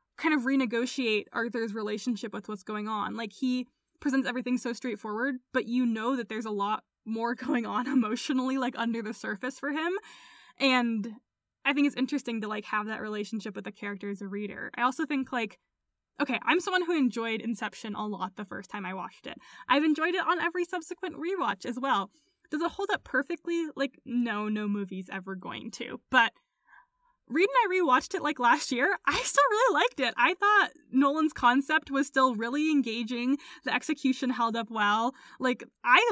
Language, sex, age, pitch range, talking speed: English, female, 10-29, 220-285 Hz, 195 wpm